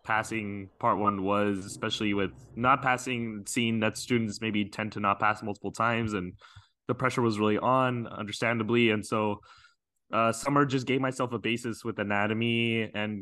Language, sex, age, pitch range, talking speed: English, male, 20-39, 105-120 Hz, 170 wpm